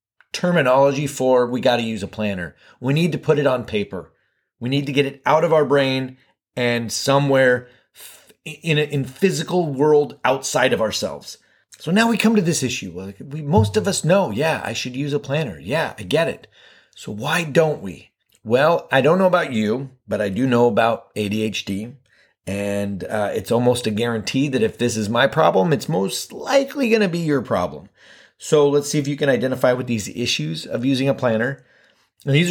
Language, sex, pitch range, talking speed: English, male, 110-150 Hz, 200 wpm